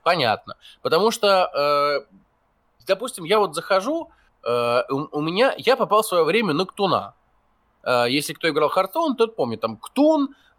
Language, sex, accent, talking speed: Russian, male, native, 135 wpm